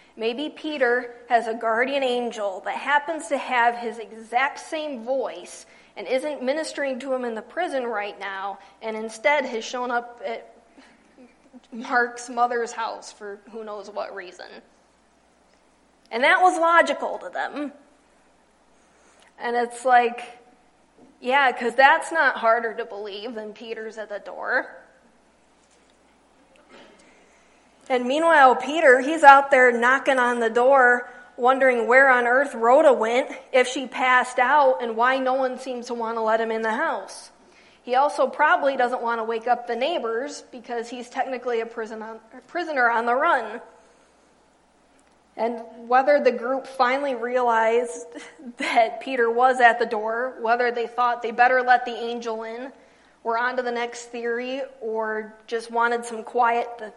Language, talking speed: English, 150 wpm